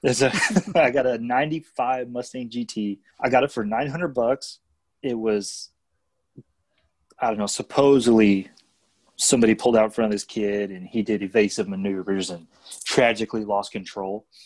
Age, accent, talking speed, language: 30-49, American, 150 wpm, English